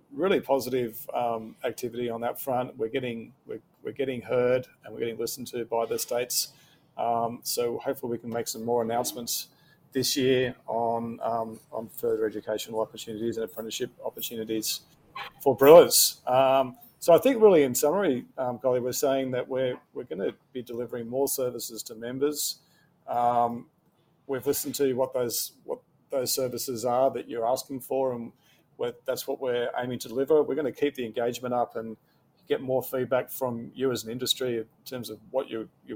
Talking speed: 180 wpm